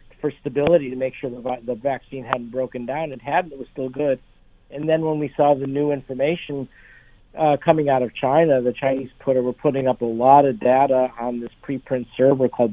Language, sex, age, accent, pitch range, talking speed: English, male, 50-69, American, 125-145 Hz, 215 wpm